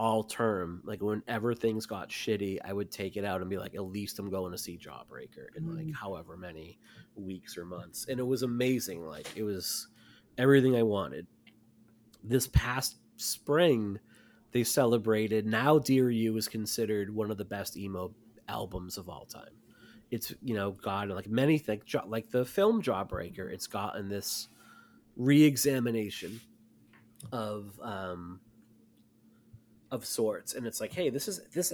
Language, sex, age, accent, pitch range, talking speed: English, male, 30-49, American, 100-125 Hz, 160 wpm